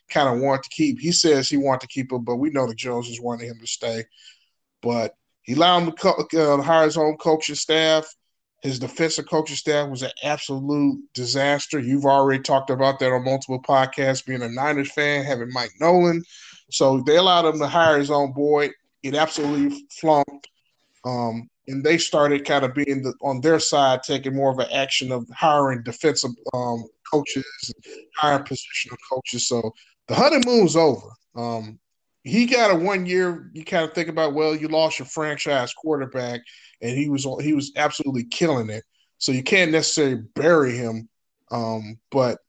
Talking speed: 180 wpm